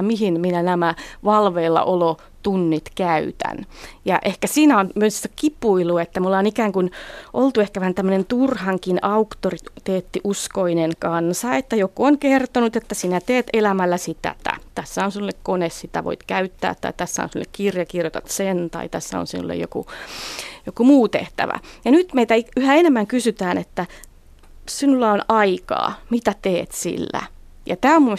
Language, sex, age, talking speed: Finnish, female, 30-49, 155 wpm